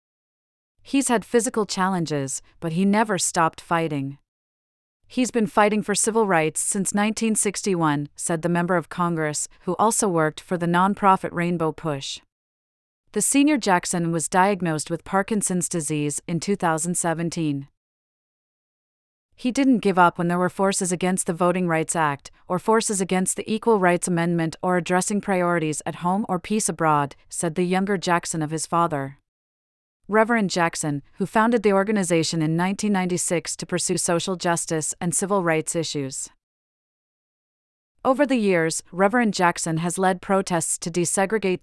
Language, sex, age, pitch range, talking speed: English, female, 40-59, 165-195 Hz, 145 wpm